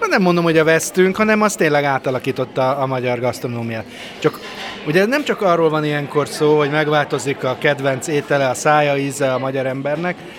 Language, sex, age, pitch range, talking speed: Hungarian, male, 30-49, 130-155 Hz, 185 wpm